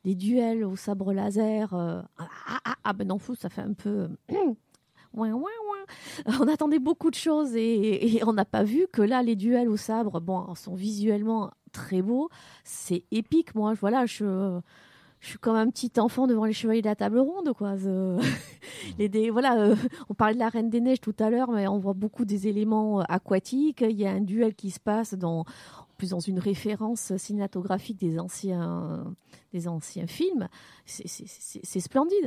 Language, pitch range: French, 195-245 Hz